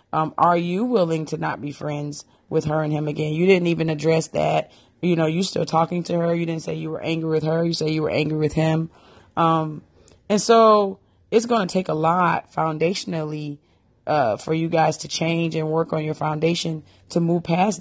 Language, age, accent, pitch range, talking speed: English, 30-49, American, 155-180 Hz, 215 wpm